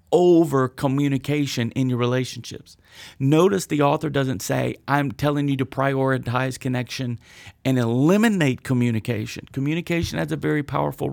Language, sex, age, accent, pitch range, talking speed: English, male, 40-59, American, 125-150 Hz, 130 wpm